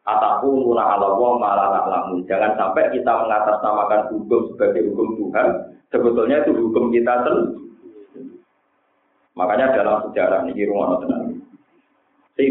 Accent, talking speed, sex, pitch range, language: native, 115 wpm, male, 120-160 Hz, Indonesian